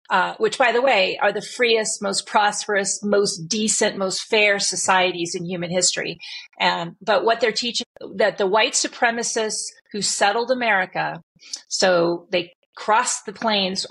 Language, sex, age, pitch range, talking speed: English, female, 40-59, 180-215 Hz, 150 wpm